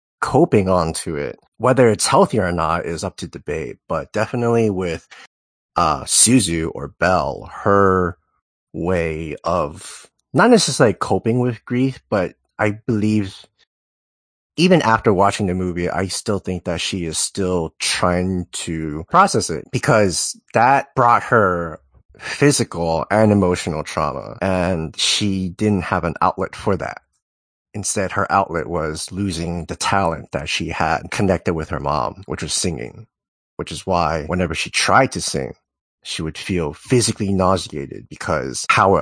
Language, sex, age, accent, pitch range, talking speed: English, male, 30-49, American, 85-110 Hz, 145 wpm